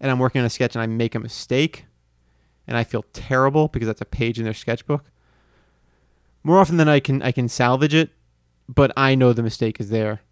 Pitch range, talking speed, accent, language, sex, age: 105-130 Hz, 220 wpm, American, English, male, 30-49